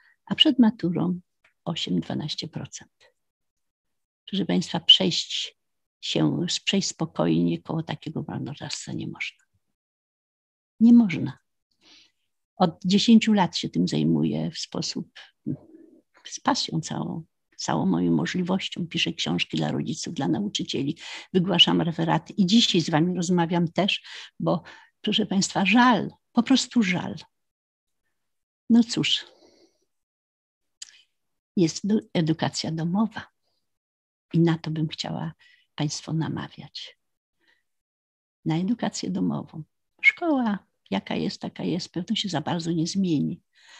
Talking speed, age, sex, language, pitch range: 105 wpm, 50-69, female, Polish, 160-225 Hz